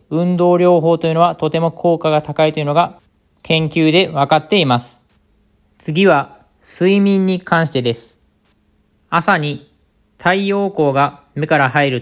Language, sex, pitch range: Japanese, male, 150-180 Hz